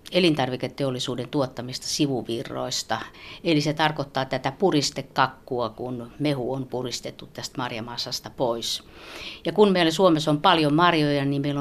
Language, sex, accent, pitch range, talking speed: Finnish, female, native, 130-160 Hz, 125 wpm